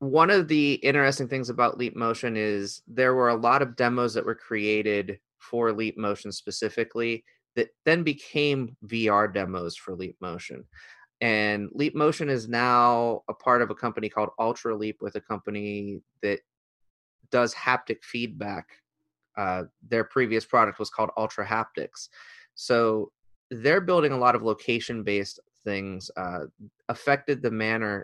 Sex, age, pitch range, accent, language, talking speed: male, 20-39, 105-125 Hz, American, English, 150 wpm